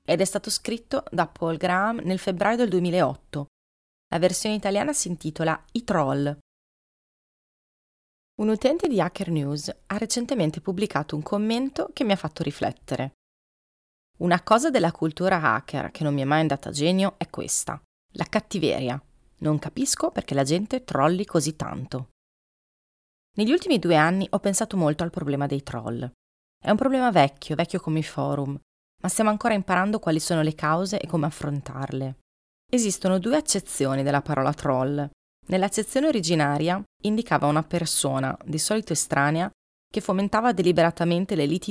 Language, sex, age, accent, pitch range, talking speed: Italian, female, 30-49, native, 140-195 Hz, 155 wpm